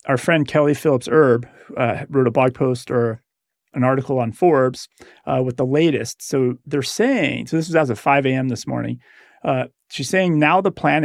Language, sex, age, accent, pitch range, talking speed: English, male, 30-49, American, 125-155 Hz, 190 wpm